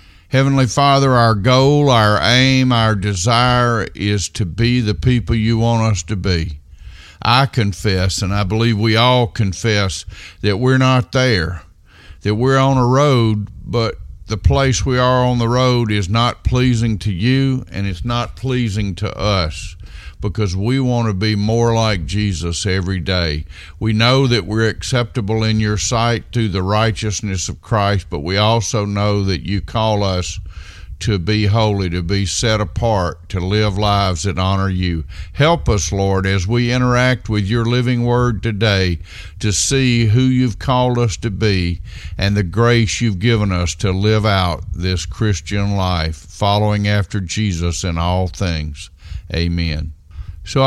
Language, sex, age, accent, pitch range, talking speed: English, male, 50-69, American, 95-115 Hz, 160 wpm